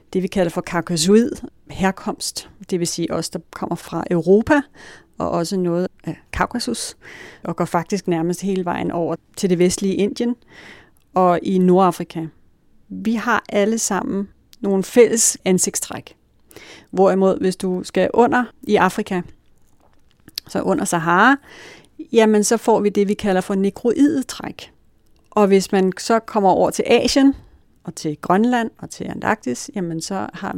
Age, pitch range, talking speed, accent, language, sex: 40-59, 180-220 Hz, 150 wpm, native, Danish, female